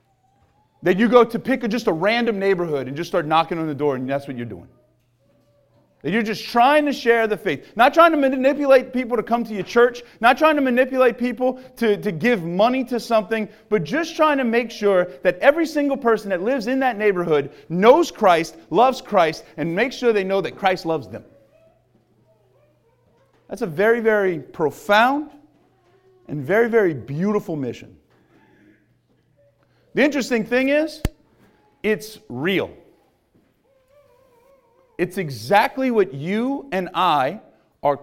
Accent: American